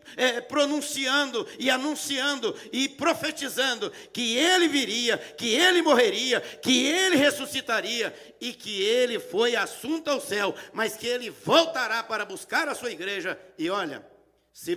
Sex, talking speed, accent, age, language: male, 135 wpm, Brazilian, 50-69, Portuguese